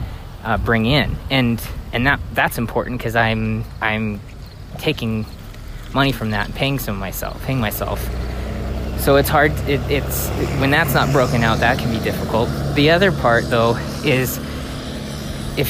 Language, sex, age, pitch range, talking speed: English, male, 20-39, 95-125 Hz, 150 wpm